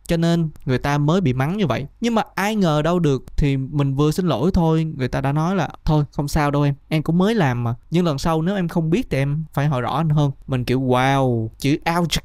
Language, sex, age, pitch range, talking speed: Vietnamese, male, 20-39, 135-175 Hz, 270 wpm